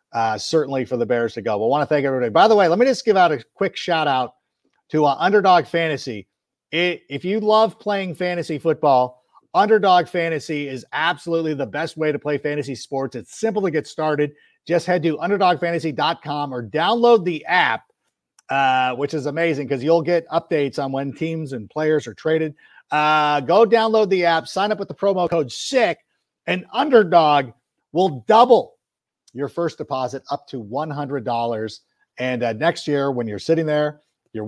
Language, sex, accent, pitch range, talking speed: English, male, American, 135-170 Hz, 180 wpm